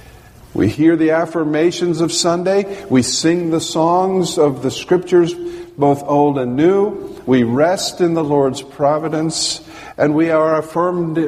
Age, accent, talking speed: 50-69, American, 145 wpm